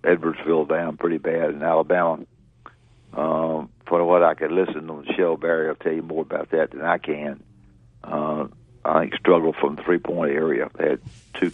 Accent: American